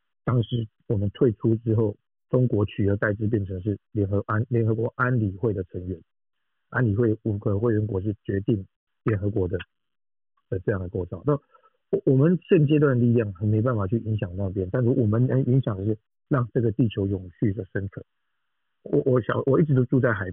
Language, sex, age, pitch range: Chinese, male, 50-69, 105-125 Hz